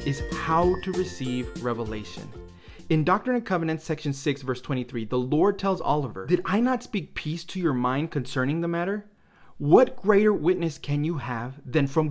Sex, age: male, 30-49